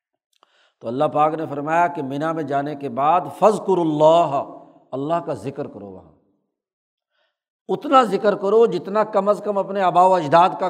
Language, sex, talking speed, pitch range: Urdu, male, 175 wpm, 155-185 Hz